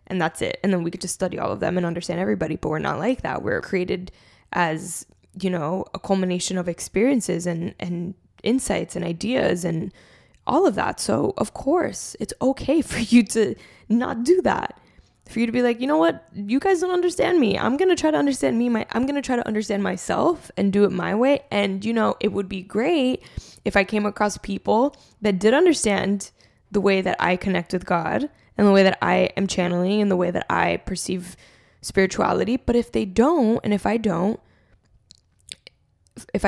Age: 10-29